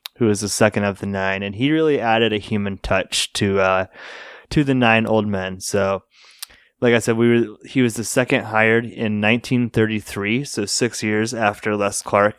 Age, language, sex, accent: 20-39, English, male, American